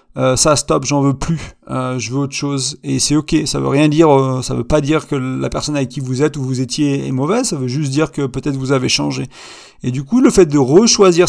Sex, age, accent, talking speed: male, 30-49, French, 275 wpm